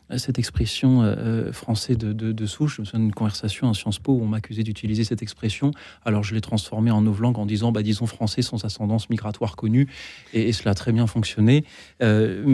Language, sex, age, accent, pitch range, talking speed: French, male, 40-59, French, 110-135 Hz, 220 wpm